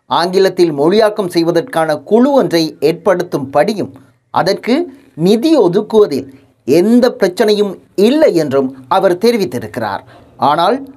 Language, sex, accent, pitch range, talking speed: Tamil, male, native, 165-260 Hz, 90 wpm